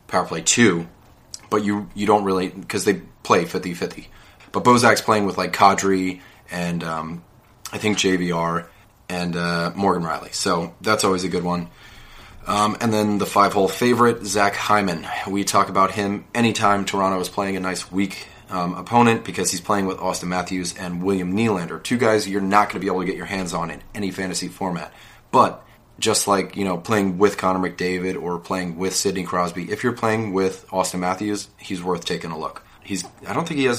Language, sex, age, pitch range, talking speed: English, male, 30-49, 90-105 Hz, 200 wpm